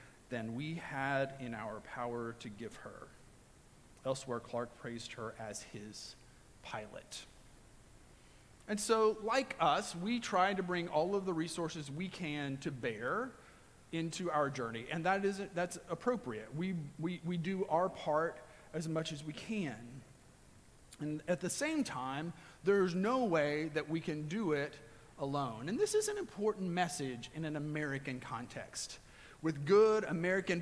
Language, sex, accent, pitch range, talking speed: English, male, American, 130-185 Hz, 155 wpm